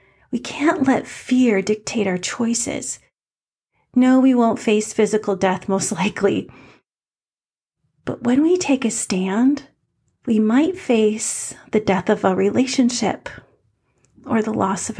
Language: English